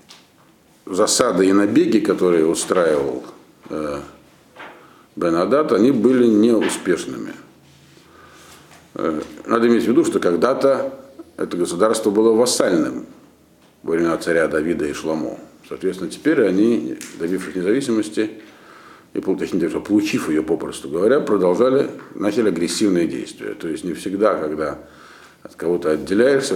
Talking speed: 115 wpm